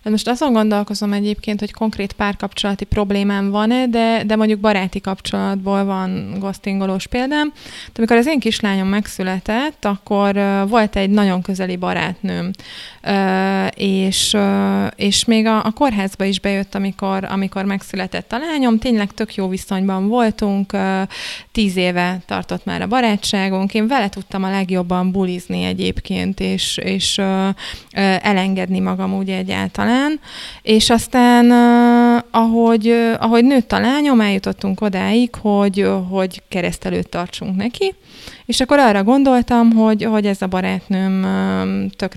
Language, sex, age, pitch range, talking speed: Hungarian, female, 20-39, 190-225 Hz, 135 wpm